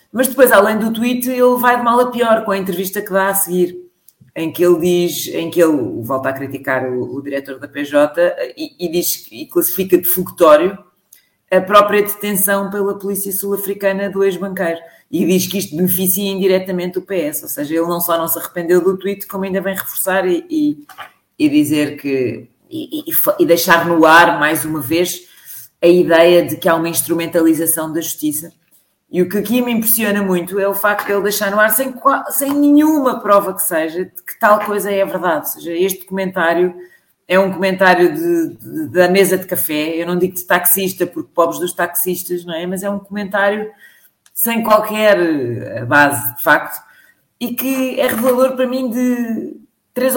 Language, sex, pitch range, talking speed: Portuguese, female, 170-235 Hz, 190 wpm